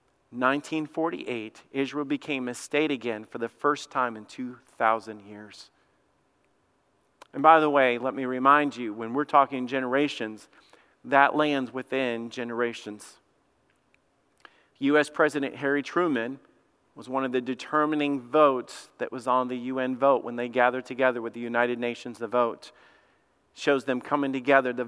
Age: 40-59